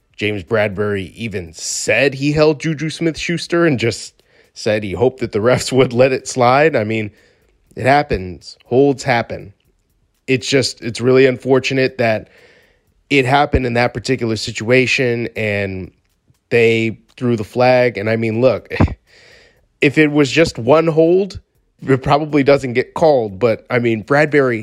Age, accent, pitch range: 30-49, American, 110-135 Hz